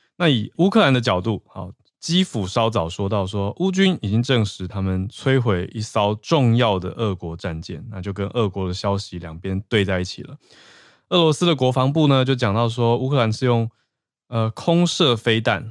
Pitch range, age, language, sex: 95-125 Hz, 20-39, Chinese, male